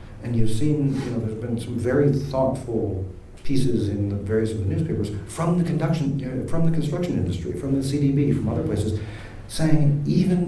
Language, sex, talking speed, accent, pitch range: English, male, 165 wpm, American, 100-130 Hz